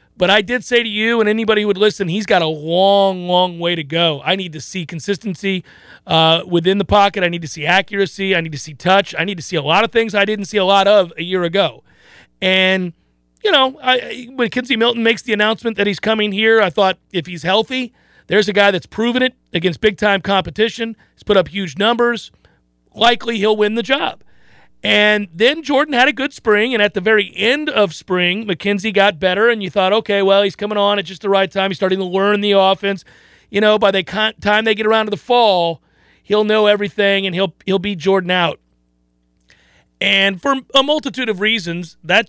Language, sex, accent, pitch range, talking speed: English, male, American, 175-215 Hz, 220 wpm